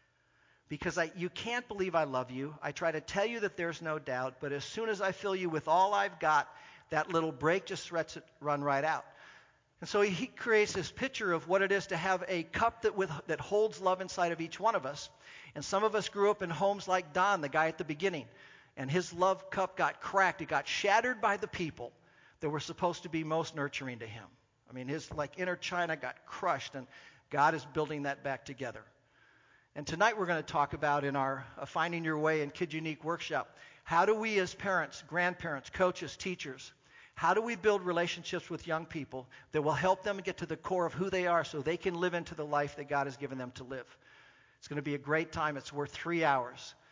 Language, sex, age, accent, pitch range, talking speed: English, male, 50-69, American, 145-185 Hz, 235 wpm